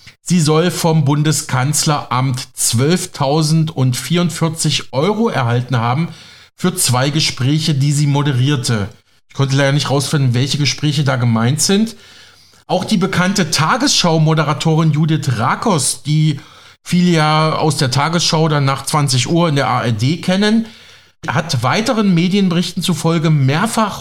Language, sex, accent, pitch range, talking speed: German, male, German, 130-175 Hz, 120 wpm